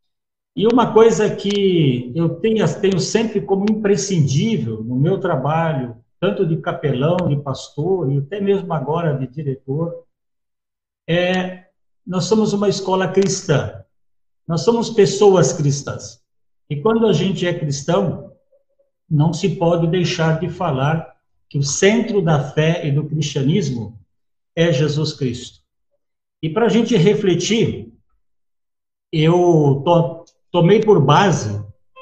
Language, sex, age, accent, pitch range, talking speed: Portuguese, male, 60-79, Brazilian, 140-195 Hz, 125 wpm